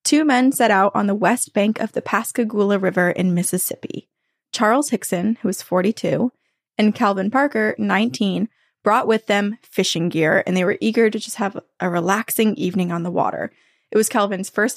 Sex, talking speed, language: female, 185 wpm, English